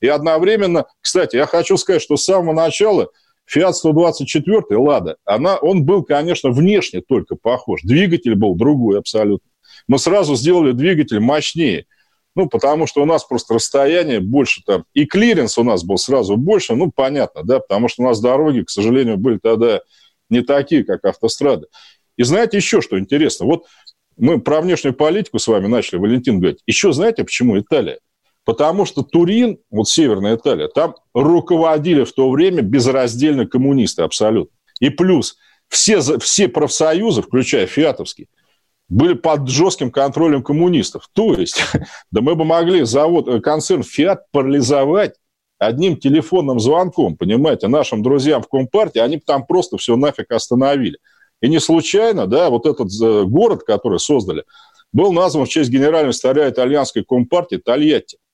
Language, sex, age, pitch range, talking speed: Russian, male, 40-59, 135-185 Hz, 150 wpm